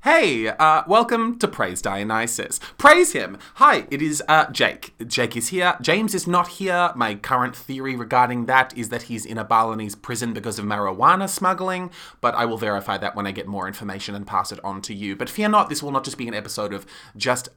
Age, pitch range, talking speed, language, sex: 20-39, 110-155 Hz, 220 wpm, English, male